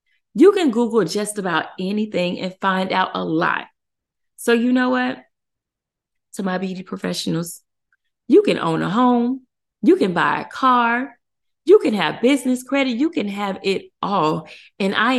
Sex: female